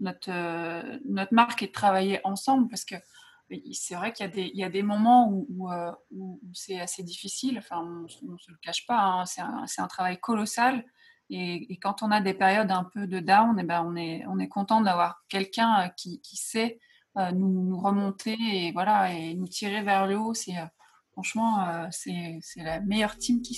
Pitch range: 180-225 Hz